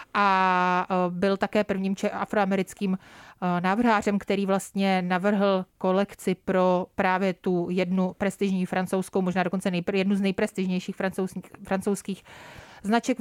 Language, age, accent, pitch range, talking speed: Czech, 30-49, native, 190-215 Hz, 105 wpm